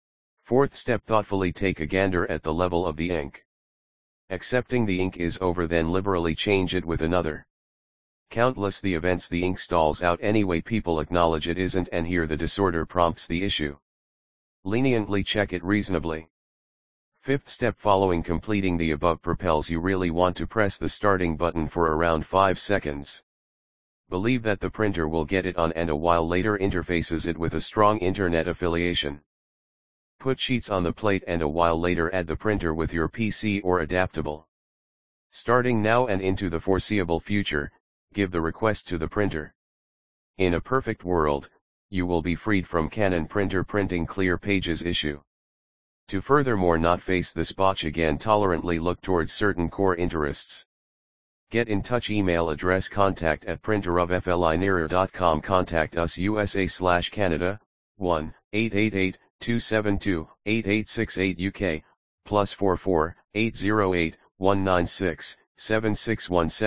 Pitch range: 85-100 Hz